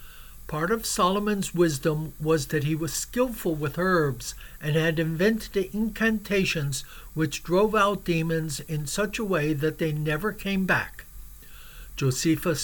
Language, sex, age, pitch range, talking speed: English, male, 60-79, 150-195 Hz, 140 wpm